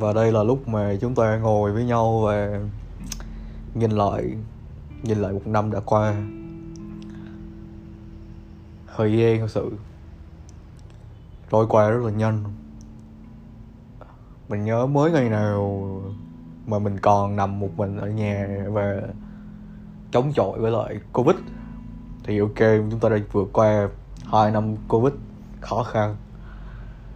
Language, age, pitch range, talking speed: Vietnamese, 20-39, 105-115 Hz, 130 wpm